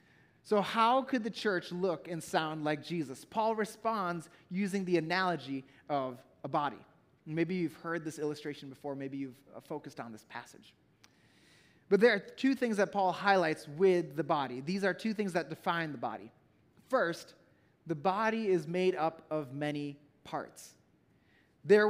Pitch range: 155-205 Hz